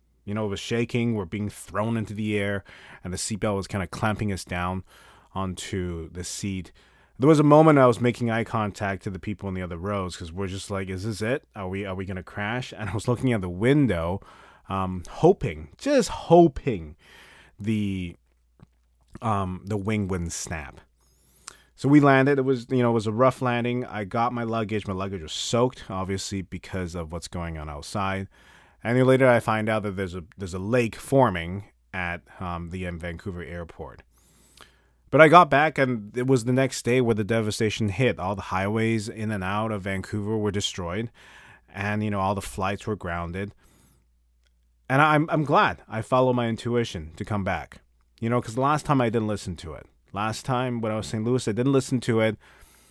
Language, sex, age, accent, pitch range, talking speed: English, male, 30-49, American, 90-120 Hz, 205 wpm